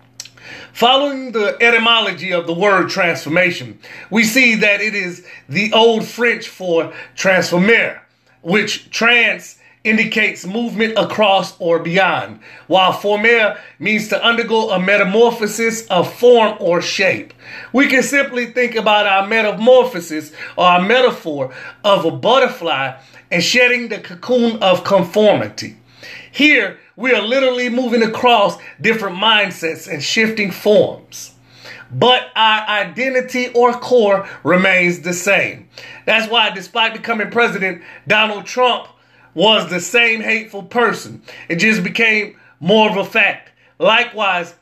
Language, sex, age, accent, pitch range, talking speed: English, male, 30-49, American, 175-230 Hz, 125 wpm